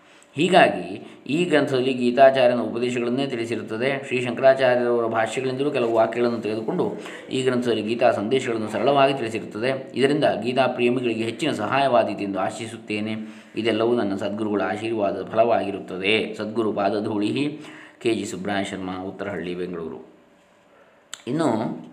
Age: 20-39